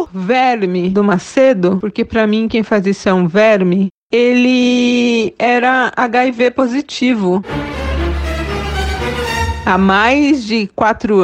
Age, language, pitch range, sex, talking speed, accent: 40-59, Portuguese, 185-250 Hz, female, 105 wpm, Brazilian